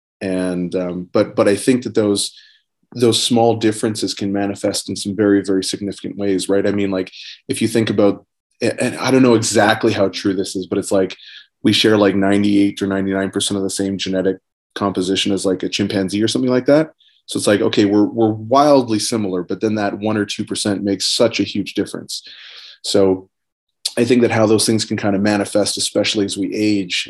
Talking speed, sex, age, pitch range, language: 205 wpm, male, 30-49, 95-110 Hz, English